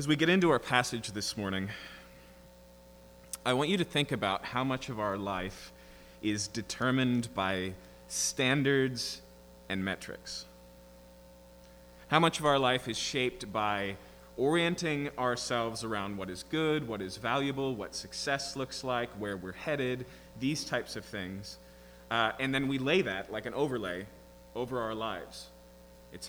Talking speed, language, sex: 150 wpm, English, male